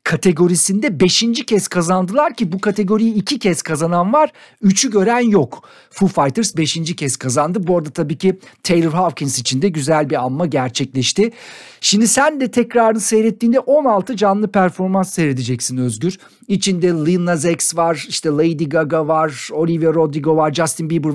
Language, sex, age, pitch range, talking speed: Turkish, male, 50-69, 155-205 Hz, 155 wpm